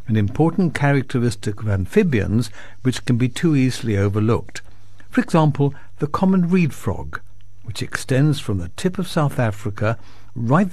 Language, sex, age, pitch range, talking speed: English, male, 60-79, 100-145 Hz, 145 wpm